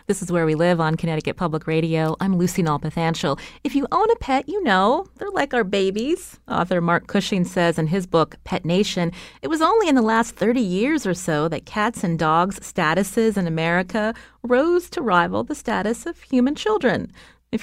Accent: American